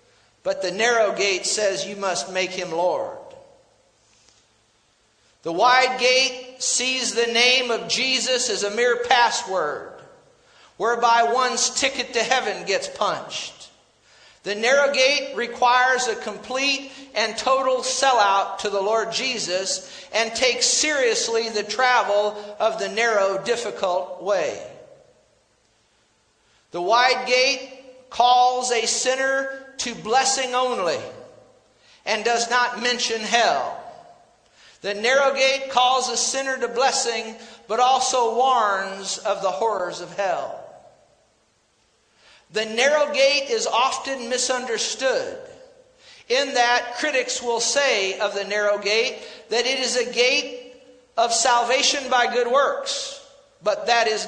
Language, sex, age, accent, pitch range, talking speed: English, male, 50-69, American, 220-270 Hz, 120 wpm